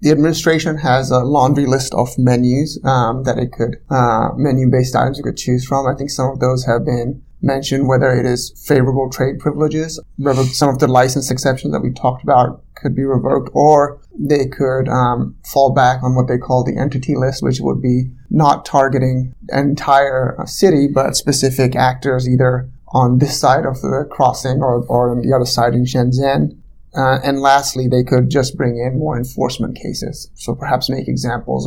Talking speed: 190 wpm